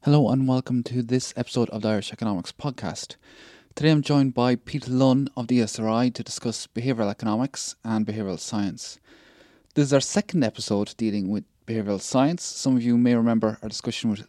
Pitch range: 110-130 Hz